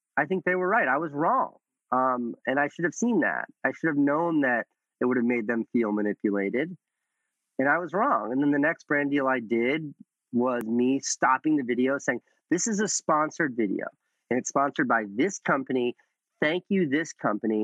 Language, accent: English, American